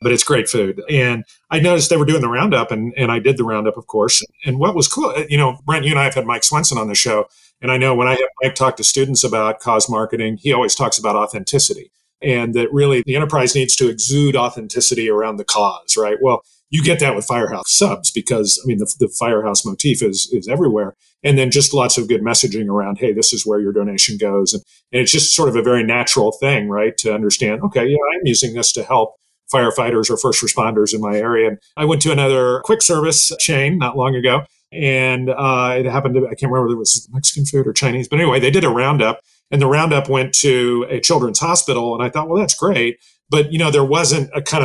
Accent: American